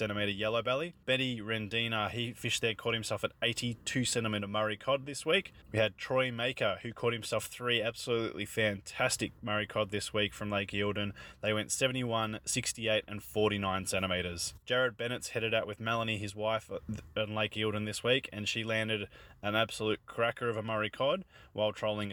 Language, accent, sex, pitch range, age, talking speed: English, Australian, male, 105-120 Hz, 20-39, 185 wpm